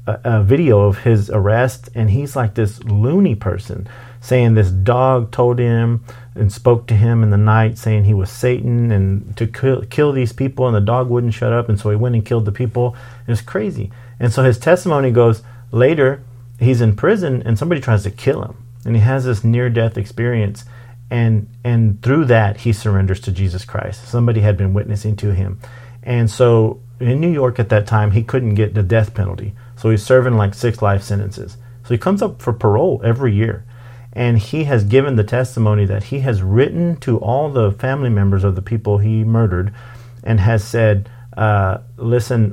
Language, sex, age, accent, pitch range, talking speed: English, male, 40-59, American, 105-125 Hz, 200 wpm